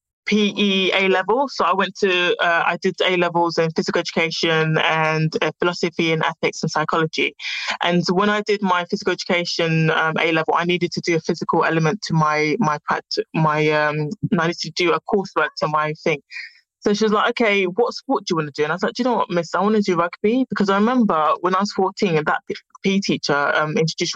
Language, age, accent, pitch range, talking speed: English, 20-39, British, 160-200 Hz, 230 wpm